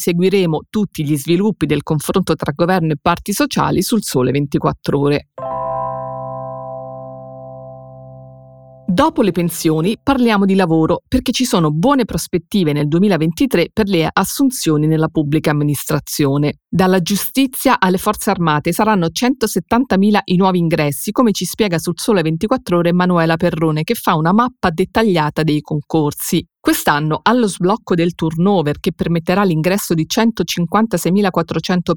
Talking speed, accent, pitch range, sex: 130 wpm, native, 155-205 Hz, female